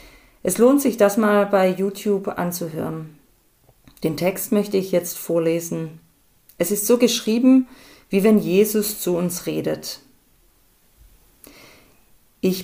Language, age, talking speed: German, 40-59, 120 wpm